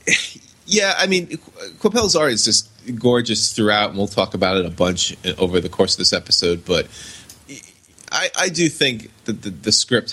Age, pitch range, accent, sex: 20-39, 95-125 Hz, American, male